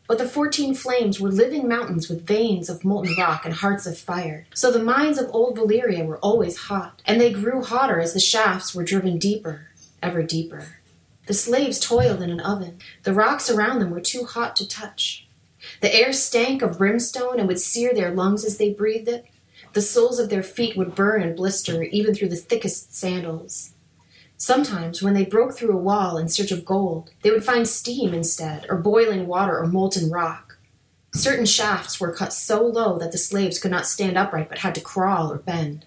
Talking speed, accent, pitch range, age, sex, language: 200 wpm, American, 170-230 Hz, 30-49, female, English